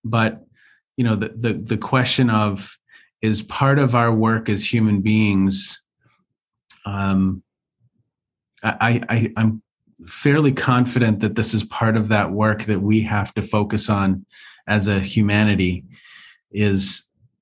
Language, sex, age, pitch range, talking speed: English, male, 40-59, 100-120 Hz, 140 wpm